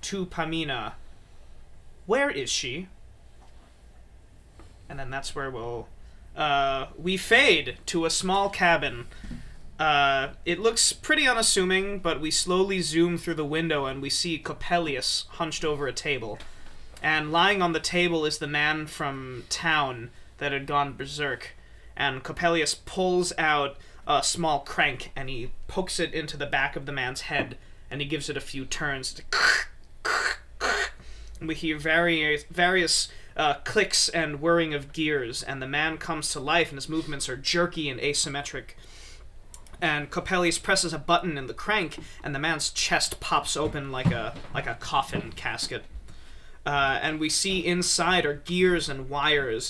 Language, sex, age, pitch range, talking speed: English, male, 20-39, 135-170 Hz, 155 wpm